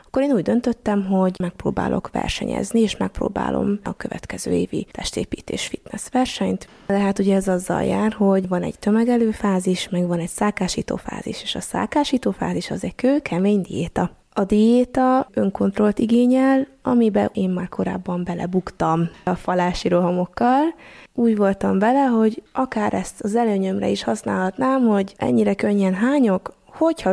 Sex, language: female, Hungarian